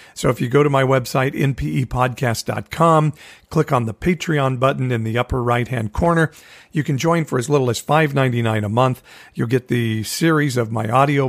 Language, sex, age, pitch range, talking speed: English, male, 50-69, 115-145 Hz, 185 wpm